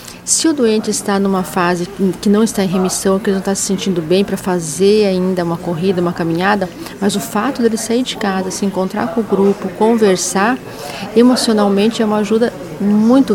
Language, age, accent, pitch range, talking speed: Portuguese, 40-59, Brazilian, 190-225 Hz, 195 wpm